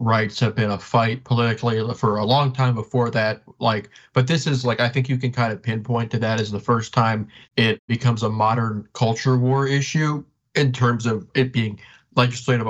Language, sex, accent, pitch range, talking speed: English, male, American, 115-130 Hz, 205 wpm